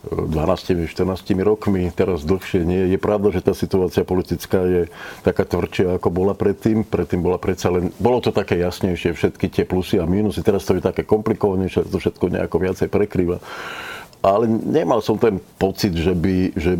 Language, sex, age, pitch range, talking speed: Slovak, male, 50-69, 90-95 Hz, 170 wpm